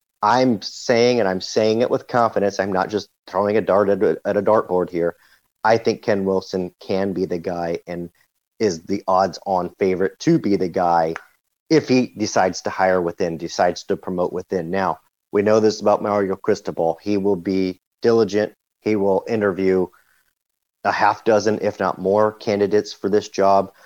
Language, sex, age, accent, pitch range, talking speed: English, male, 40-59, American, 90-105 Hz, 175 wpm